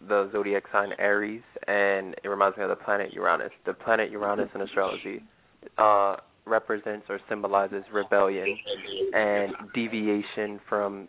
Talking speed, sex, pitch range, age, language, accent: 135 wpm, male, 100-110 Hz, 20-39, English, American